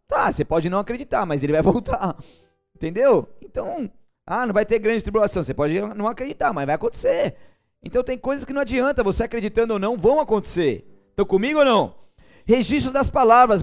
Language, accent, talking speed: Portuguese, Brazilian, 190 wpm